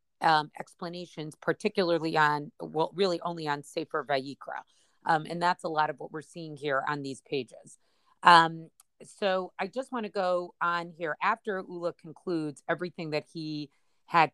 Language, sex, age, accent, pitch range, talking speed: English, female, 40-59, American, 160-200 Hz, 165 wpm